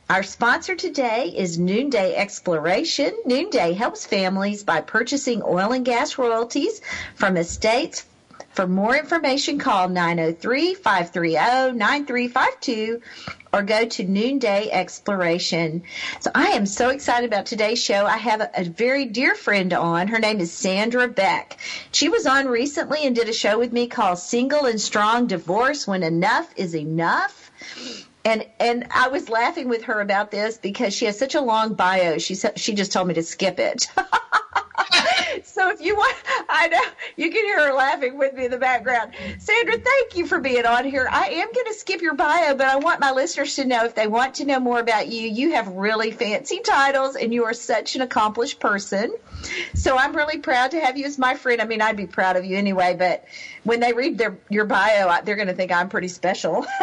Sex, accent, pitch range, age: female, American, 200-270 Hz, 50-69